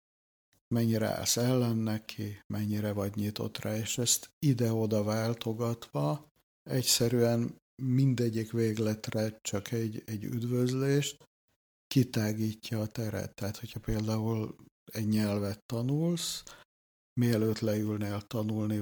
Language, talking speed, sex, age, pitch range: Hungarian, 100 wpm, male, 60-79, 105-120 Hz